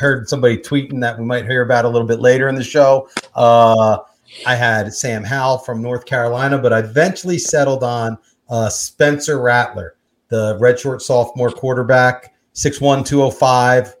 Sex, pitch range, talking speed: male, 115-140 Hz, 165 wpm